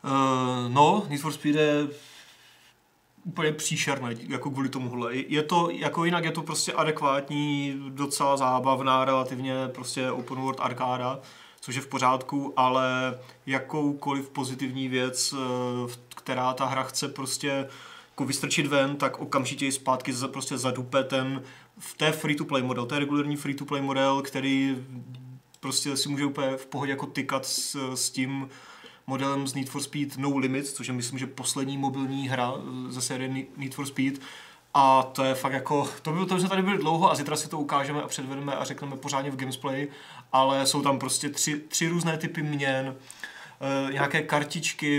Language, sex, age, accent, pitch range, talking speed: Czech, male, 30-49, native, 130-150 Hz, 160 wpm